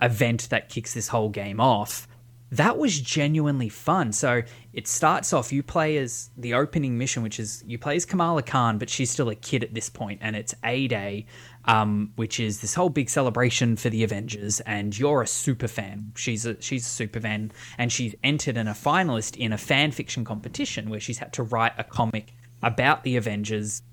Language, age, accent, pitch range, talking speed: English, 20-39, Australian, 110-125 Hz, 205 wpm